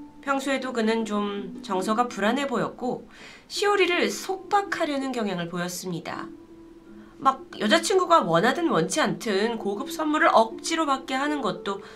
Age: 30-49